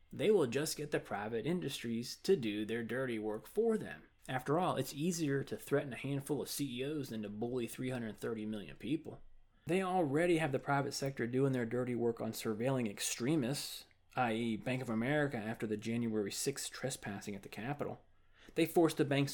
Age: 30-49